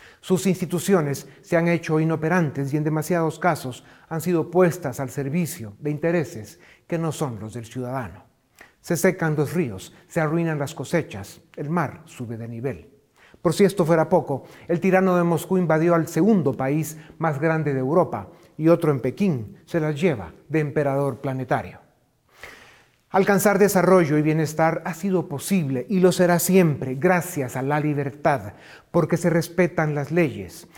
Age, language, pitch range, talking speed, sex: 40-59, Spanish, 140-175 Hz, 160 wpm, male